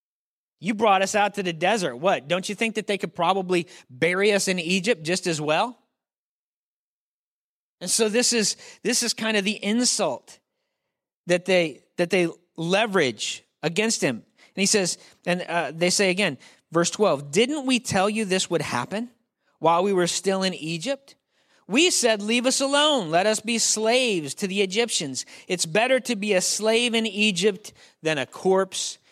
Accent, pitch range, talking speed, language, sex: American, 175-220 Hz, 175 wpm, English, male